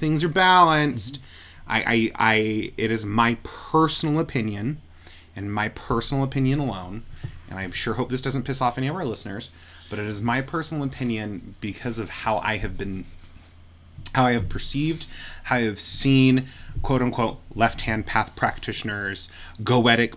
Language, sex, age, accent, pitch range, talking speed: English, male, 20-39, American, 95-125 Hz, 165 wpm